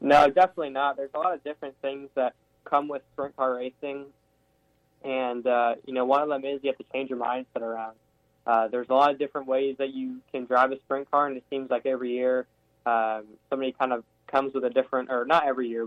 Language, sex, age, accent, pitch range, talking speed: English, male, 10-29, American, 120-135 Hz, 240 wpm